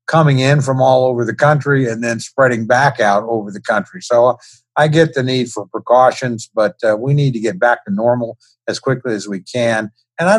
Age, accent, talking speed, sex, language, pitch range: 50-69, American, 225 wpm, male, English, 115-135 Hz